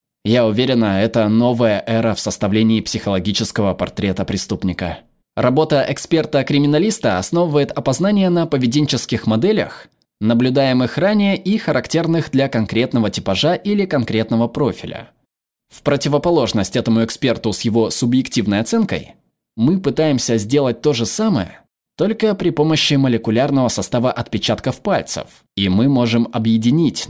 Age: 20-39